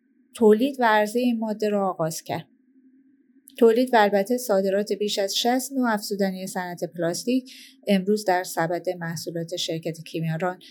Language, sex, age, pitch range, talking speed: Persian, female, 30-49, 185-225 Hz, 125 wpm